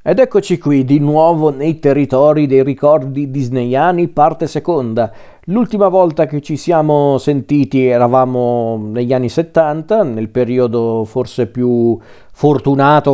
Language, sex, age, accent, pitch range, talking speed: Italian, male, 40-59, native, 115-135 Hz, 125 wpm